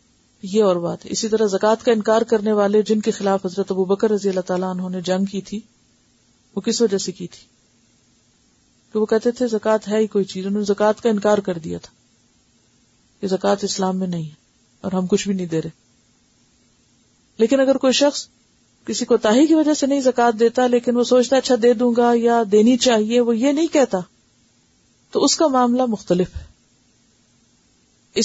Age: 40-59